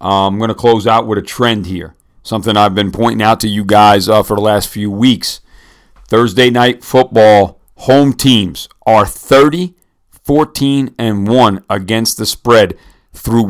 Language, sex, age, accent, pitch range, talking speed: English, male, 50-69, American, 95-120 Hz, 150 wpm